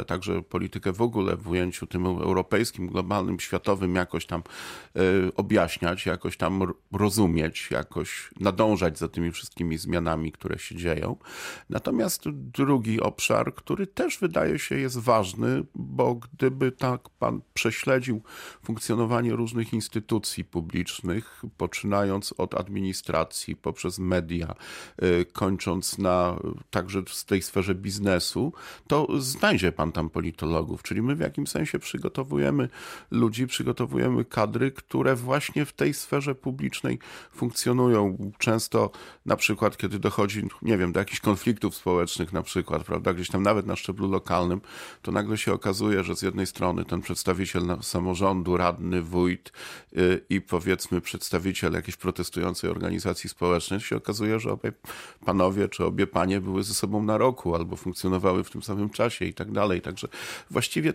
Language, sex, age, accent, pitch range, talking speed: Polish, male, 40-59, native, 90-105 Hz, 140 wpm